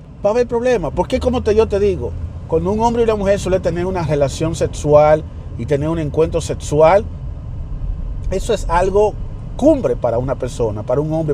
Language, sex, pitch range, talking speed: Spanish, male, 135-180 Hz, 185 wpm